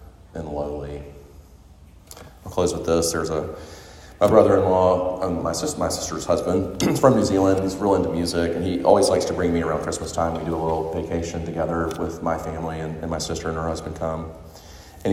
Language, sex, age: English, male, 30-49